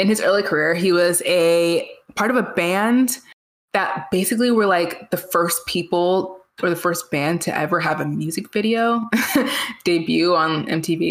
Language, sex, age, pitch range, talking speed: English, female, 20-39, 170-210 Hz, 165 wpm